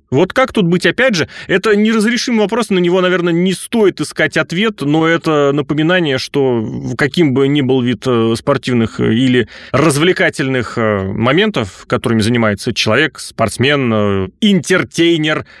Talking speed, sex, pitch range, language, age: 130 wpm, male, 125-165 Hz, Russian, 30-49